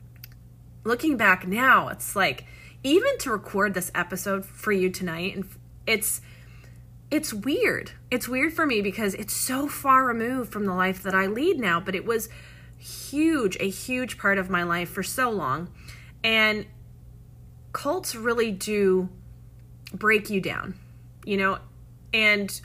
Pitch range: 170-215 Hz